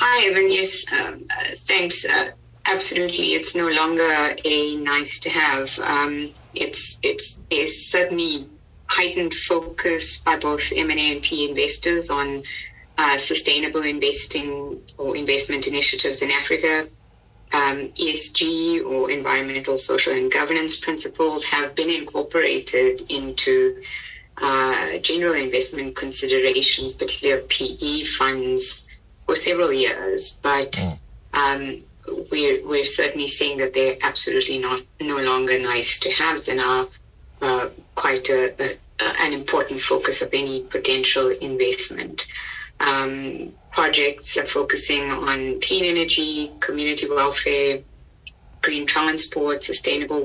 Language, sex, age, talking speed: English, female, 20-39, 115 wpm